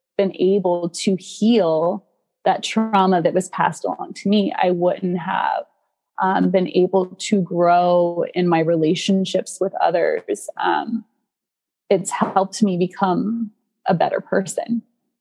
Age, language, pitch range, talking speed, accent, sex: 20-39, English, 180-205 Hz, 130 wpm, American, female